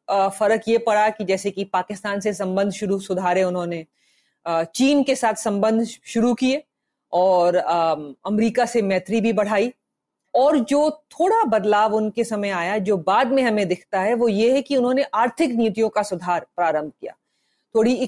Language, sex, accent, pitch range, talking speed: Hindi, female, native, 180-230 Hz, 165 wpm